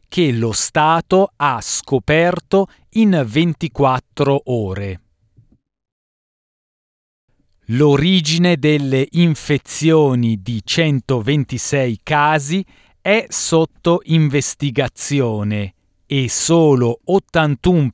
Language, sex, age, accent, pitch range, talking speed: Italian, male, 40-59, native, 120-160 Hz, 65 wpm